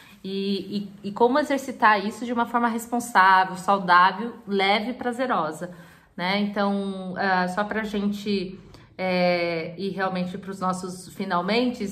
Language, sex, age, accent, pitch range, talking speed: Portuguese, female, 20-39, Brazilian, 195-235 Hz, 135 wpm